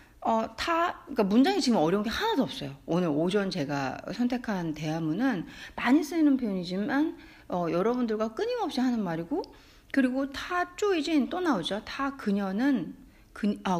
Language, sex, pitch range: Korean, female, 205-330 Hz